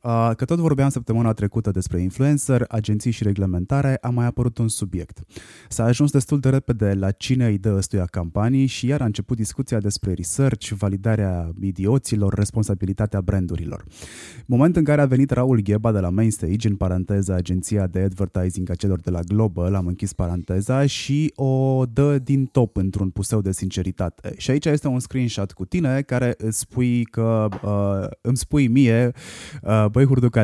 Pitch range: 95-130 Hz